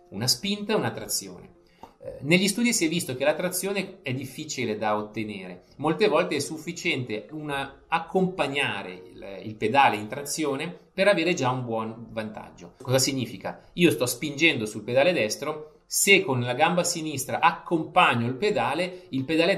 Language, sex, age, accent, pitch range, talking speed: Italian, male, 30-49, native, 110-170 Hz, 155 wpm